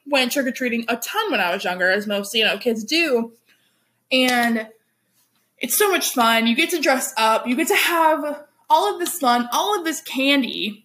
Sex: female